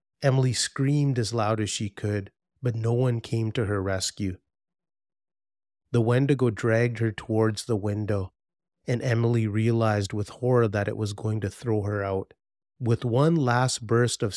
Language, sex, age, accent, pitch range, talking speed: English, male, 30-49, American, 105-125 Hz, 165 wpm